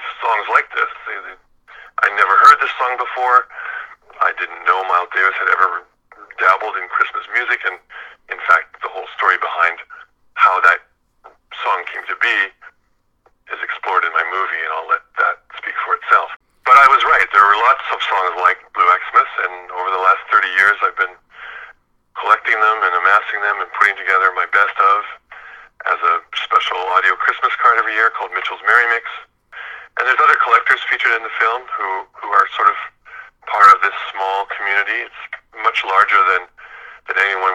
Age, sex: 50-69, male